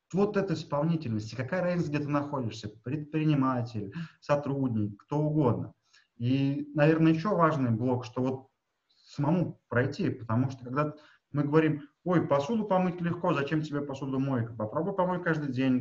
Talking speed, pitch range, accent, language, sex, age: 145 wpm, 125-160 Hz, native, Russian, male, 30-49